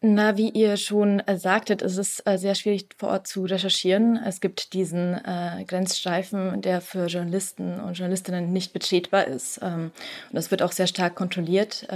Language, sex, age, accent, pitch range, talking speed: German, female, 20-39, German, 175-200 Hz, 160 wpm